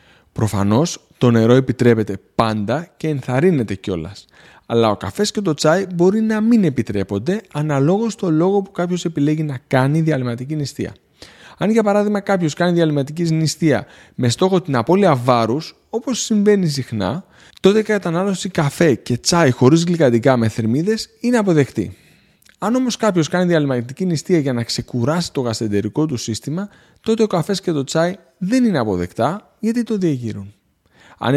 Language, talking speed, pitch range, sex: Greek, 155 wpm, 120-185 Hz, male